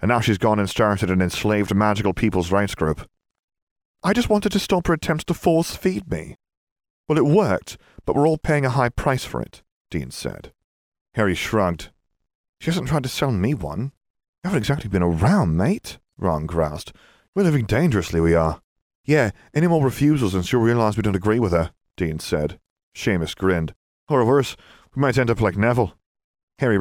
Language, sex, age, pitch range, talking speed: English, male, 30-49, 90-125 Hz, 185 wpm